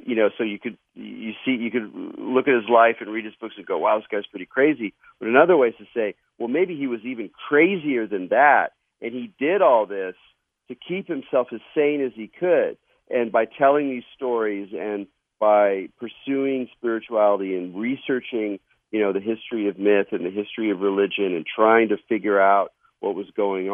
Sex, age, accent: male, 50-69, American